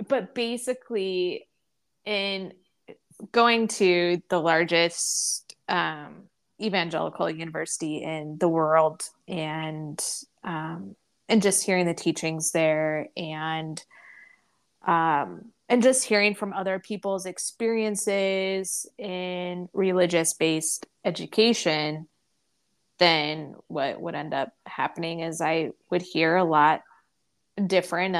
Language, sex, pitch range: English, female, 165-200 Hz